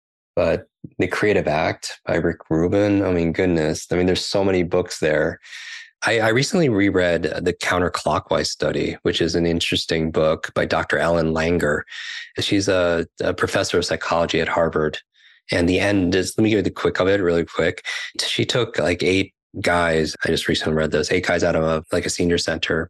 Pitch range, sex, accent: 80-90 Hz, male, American